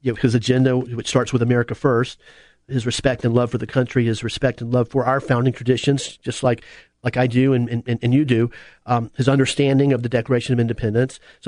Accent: American